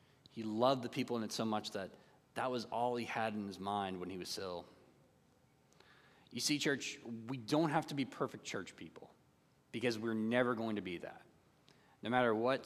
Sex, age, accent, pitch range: male, 20-39, American, 100-130 Hz